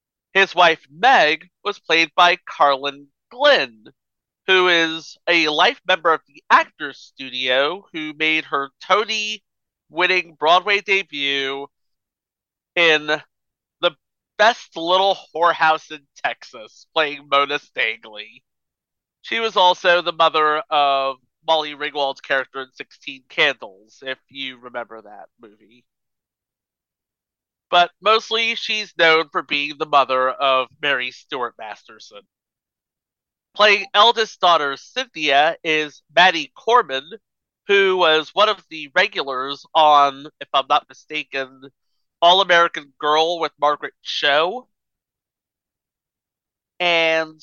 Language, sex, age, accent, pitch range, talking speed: English, male, 40-59, American, 140-180 Hz, 110 wpm